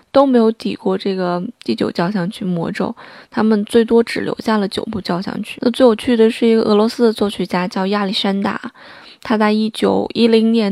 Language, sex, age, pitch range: Chinese, female, 20-39, 195-230 Hz